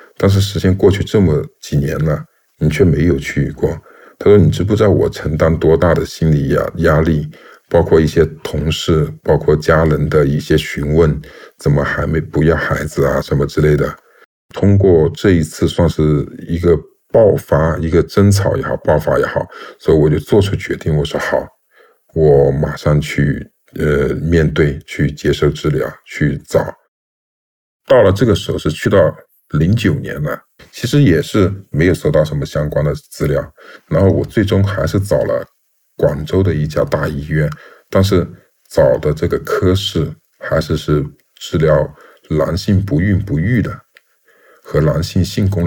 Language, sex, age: Chinese, male, 50-69